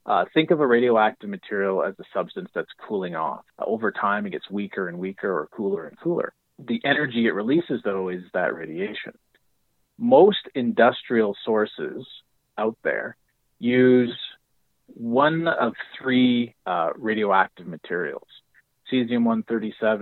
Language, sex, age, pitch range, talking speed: English, male, 30-49, 100-130 Hz, 135 wpm